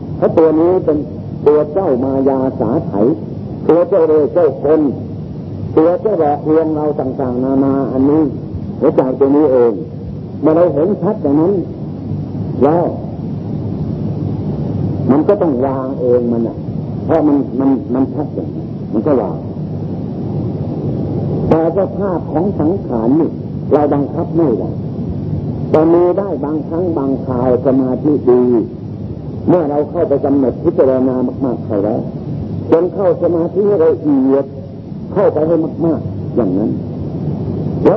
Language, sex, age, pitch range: Thai, male, 50-69, 135-170 Hz